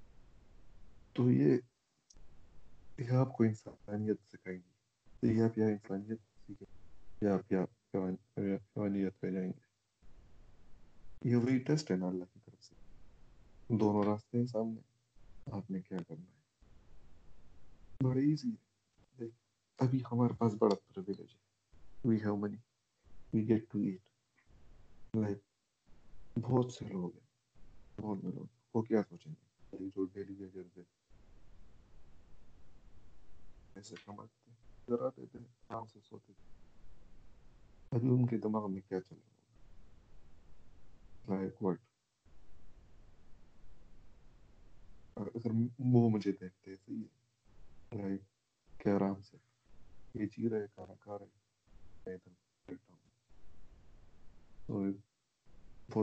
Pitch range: 95-115 Hz